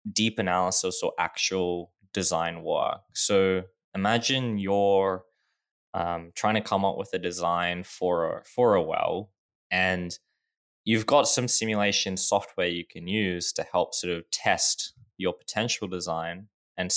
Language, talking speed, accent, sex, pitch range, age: English, 140 wpm, Australian, male, 90-110 Hz, 10-29